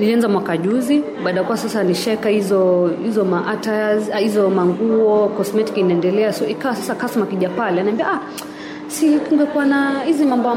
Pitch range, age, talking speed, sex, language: 190-250 Hz, 30-49, 135 wpm, female, Swahili